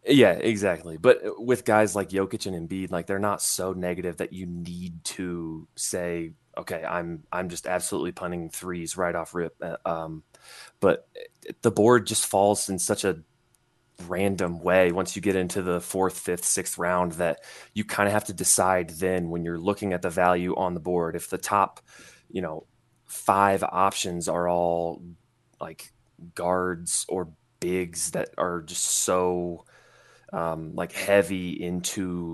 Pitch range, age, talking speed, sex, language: 85-95 Hz, 20-39, 160 wpm, male, English